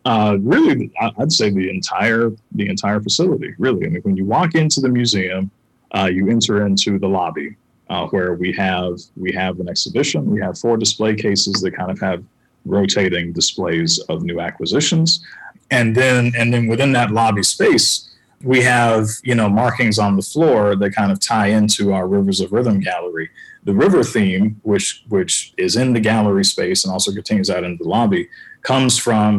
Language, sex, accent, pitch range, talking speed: English, male, American, 95-115 Hz, 185 wpm